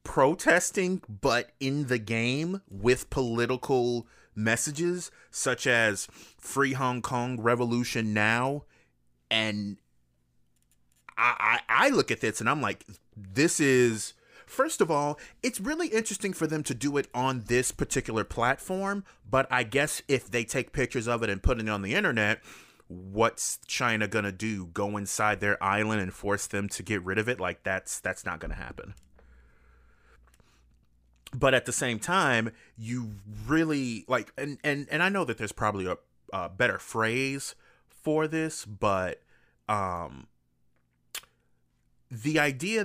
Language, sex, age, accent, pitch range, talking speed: English, male, 30-49, American, 100-140 Hz, 145 wpm